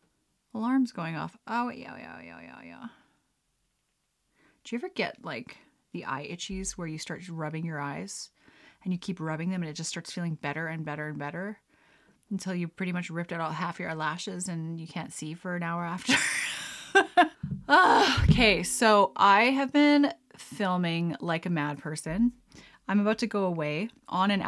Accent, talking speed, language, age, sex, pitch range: American, 180 wpm, English, 30-49, female, 170-230 Hz